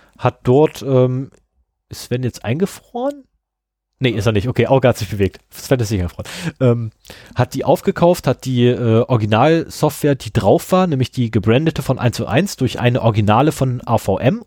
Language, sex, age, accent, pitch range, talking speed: German, male, 30-49, German, 110-145 Hz, 180 wpm